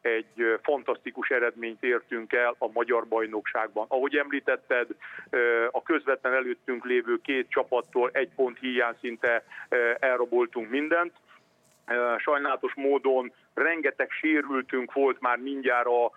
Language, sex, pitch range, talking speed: Hungarian, male, 120-155 Hz, 110 wpm